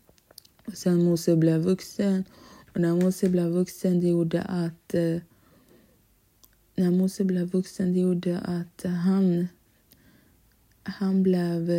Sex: female